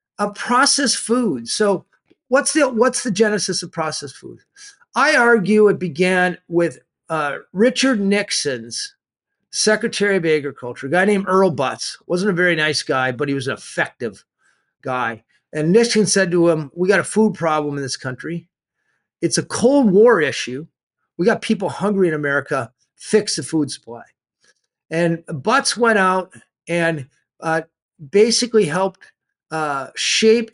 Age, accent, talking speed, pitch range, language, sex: 50-69, American, 150 wpm, 155-215 Hz, English, male